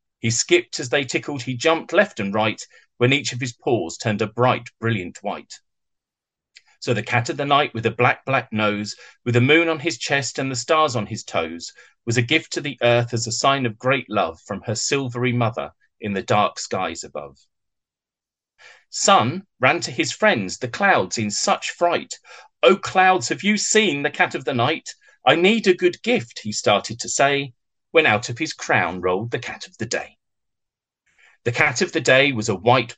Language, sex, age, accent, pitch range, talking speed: English, male, 40-59, British, 115-145 Hz, 205 wpm